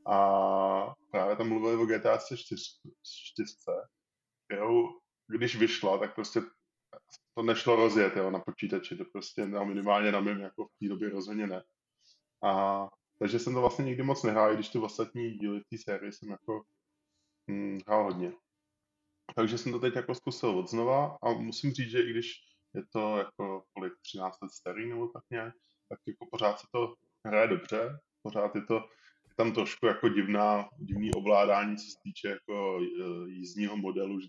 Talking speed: 175 wpm